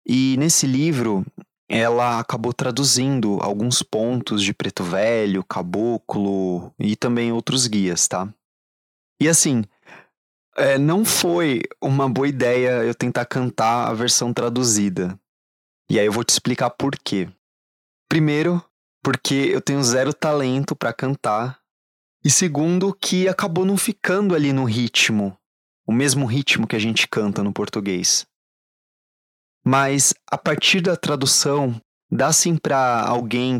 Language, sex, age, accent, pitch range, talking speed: Portuguese, male, 20-39, Brazilian, 110-140 Hz, 130 wpm